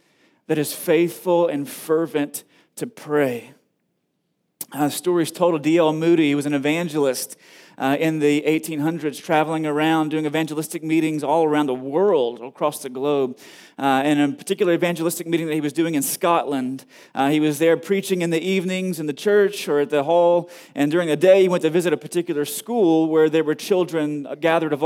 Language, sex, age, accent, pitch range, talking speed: English, male, 30-49, American, 150-175 Hz, 195 wpm